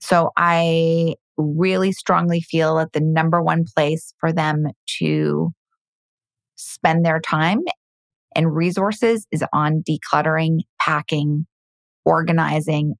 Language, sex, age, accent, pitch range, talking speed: English, female, 20-39, American, 155-180 Hz, 105 wpm